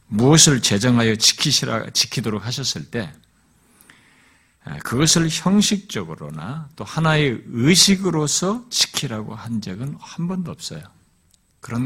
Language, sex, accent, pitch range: Korean, male, native, 105-165 Hz